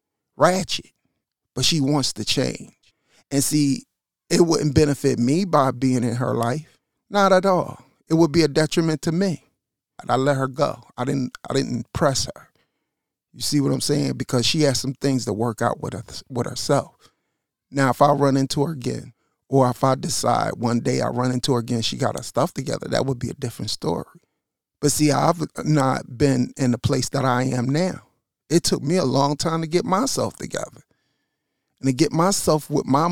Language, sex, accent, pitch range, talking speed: English, male, American, 135-190 Hz, 205 wpm